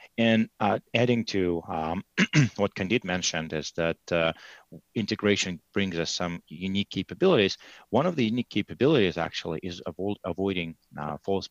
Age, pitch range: 30-49, 80-105 Hz